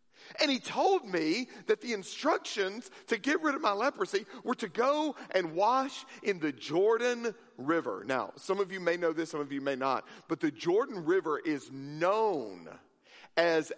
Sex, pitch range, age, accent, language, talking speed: male, 180-300 Hz, 40-59, American, English, 180 wpm